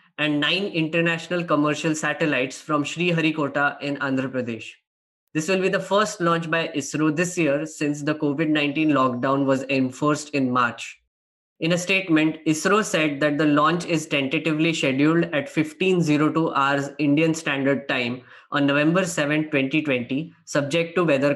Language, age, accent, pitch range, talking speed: English, 10-29, Indian, 140-165 Hz, 150 wpm